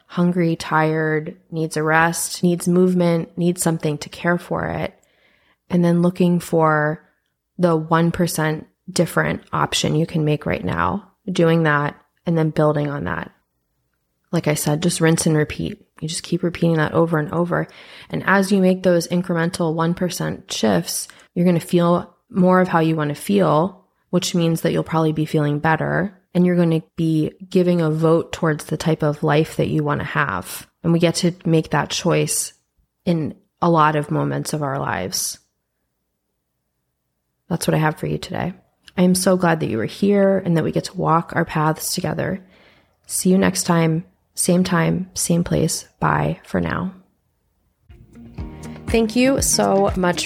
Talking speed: 175 wpm